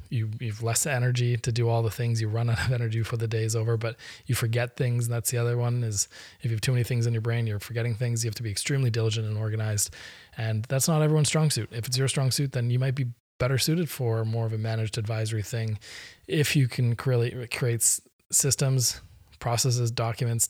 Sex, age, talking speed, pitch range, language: male, 20-39, 235 wpm, 110-125 Hz, English